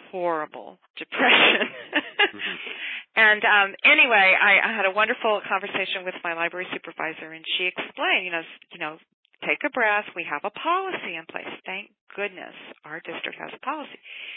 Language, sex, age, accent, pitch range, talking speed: English, female, 40-59, American, 175-215 Hz, 160 wpm